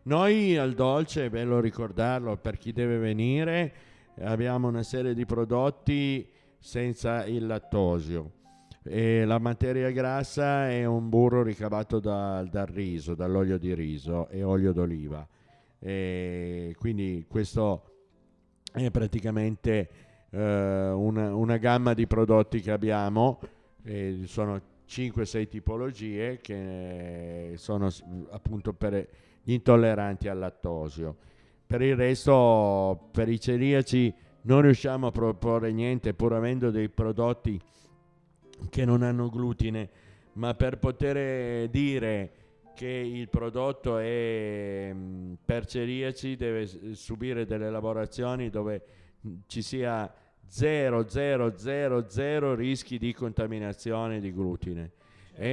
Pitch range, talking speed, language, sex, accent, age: 100-125 Hz, 115 wpm, Italian, male, native, 50-69